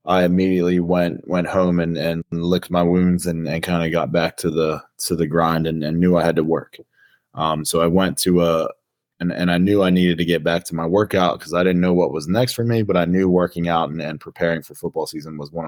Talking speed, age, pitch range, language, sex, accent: 260 wpm, 20-39, 80-90 Hz, English, male, American